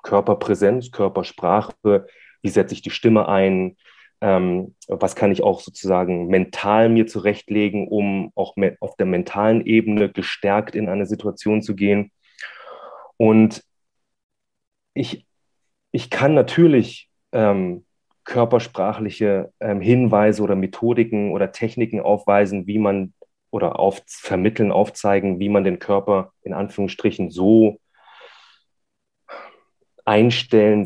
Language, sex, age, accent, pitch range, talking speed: German, male, 30-49, German, 100-110 Hz, 110 wpm